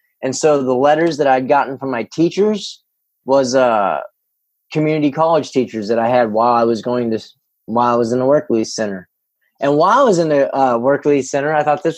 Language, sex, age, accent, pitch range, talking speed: English, male, 20-39, American, 135-175 Hz, 220 wpm